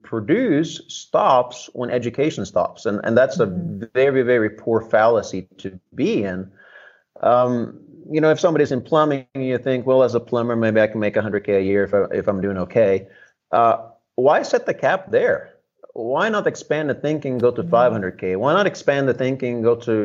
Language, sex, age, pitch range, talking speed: English, male, 30-49, 115-155 Hz, 200 wpm